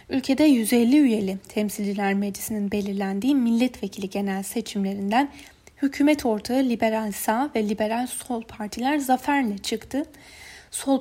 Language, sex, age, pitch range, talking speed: Turkish, female, 10-29, 210-265 Hz, 110 wpm